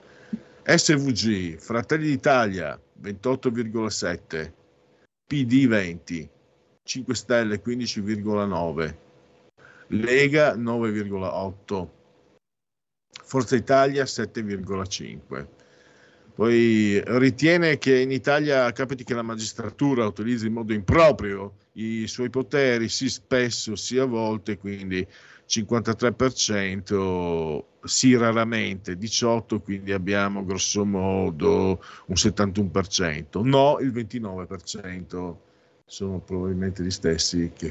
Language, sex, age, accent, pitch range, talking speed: Italian, male, 50-69, native, 80-115 Hz, 85 wpm